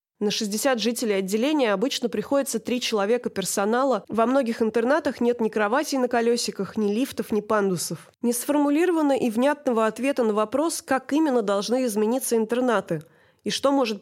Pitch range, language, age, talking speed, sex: 200-250 Hz, Russian, 20-39, 150 wpm, female